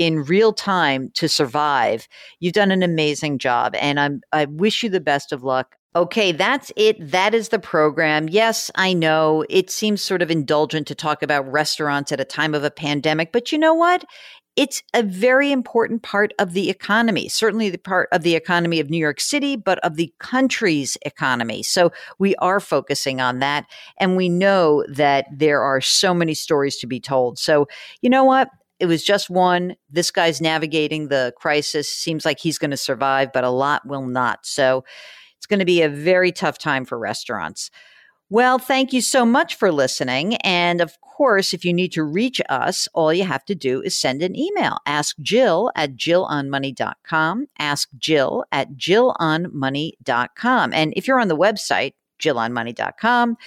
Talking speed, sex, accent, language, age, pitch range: 180 wpm, female, American, English, 50-69, 145-205 Hz